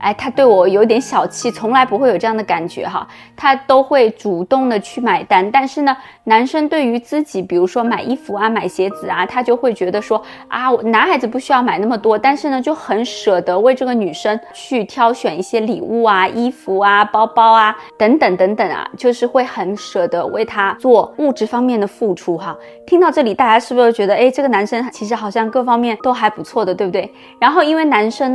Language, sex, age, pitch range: Chinese, female, 20-39, 200-255 Hz